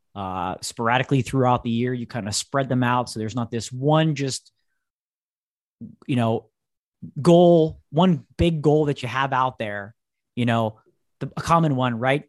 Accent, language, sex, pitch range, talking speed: American, English, male, 115-155 Hz, 165 wpm